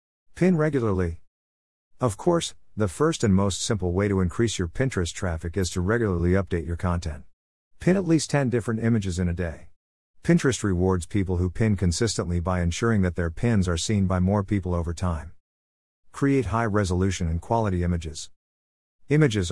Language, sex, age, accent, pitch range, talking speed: English, male, 50-69, American, 85-115 Hz, 165 wpm